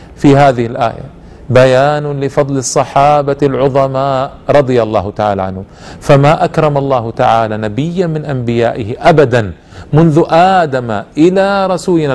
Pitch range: 120-170 Hz